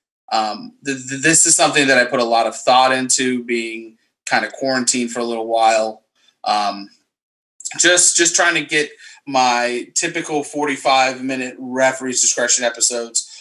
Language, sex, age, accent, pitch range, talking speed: English, male, 20-39, American, 120-160 Hz, 150 wpm